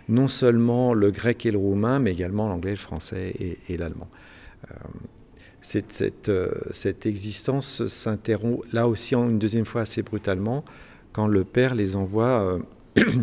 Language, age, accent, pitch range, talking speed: French, 50-69, French, 95-115 Hz, 160 wpm